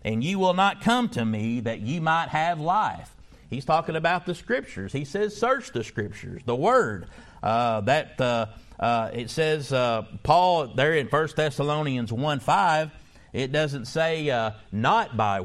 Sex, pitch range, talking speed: male, 115-160 Hz, 170 wpm